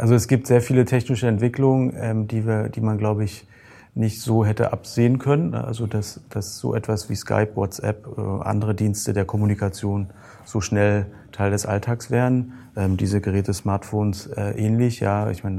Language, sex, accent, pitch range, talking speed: German, male, German, 100-115 Hz, 180 wpm